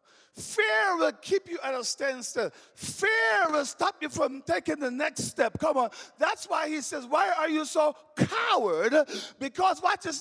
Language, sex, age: English, male, 40-59